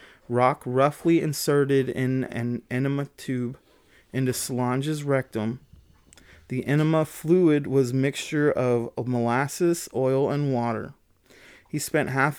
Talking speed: 110 wpm